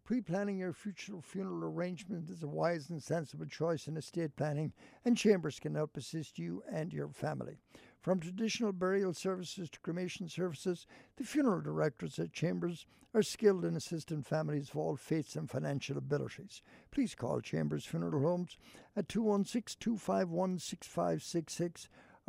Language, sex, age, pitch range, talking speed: English, male, 60-79, 150-190 Hz, 145 wpm